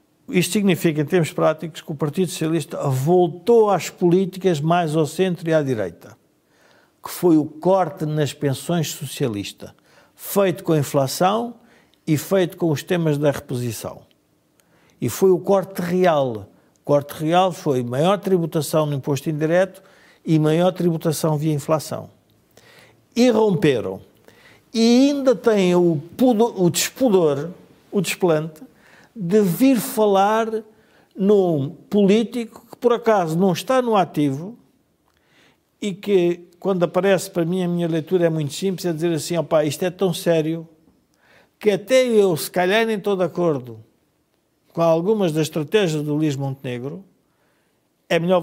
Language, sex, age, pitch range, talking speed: Portuguese, male, 50-69, 155-195 Hz, 140 wpm